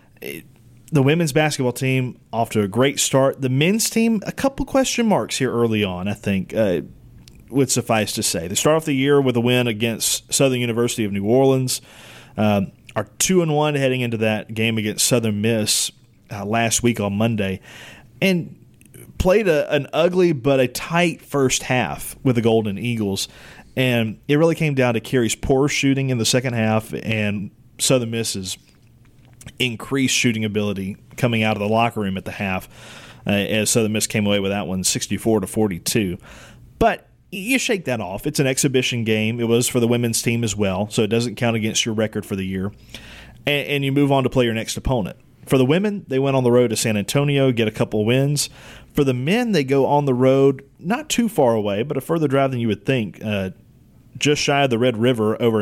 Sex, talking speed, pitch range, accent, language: male, 205 wpm, 110-135 Hz, American, English